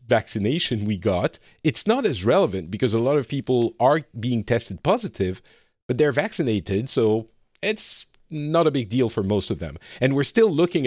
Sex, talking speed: male, 180 wpm